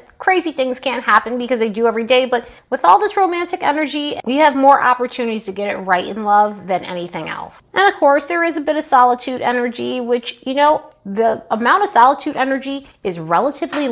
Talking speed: 205 wpm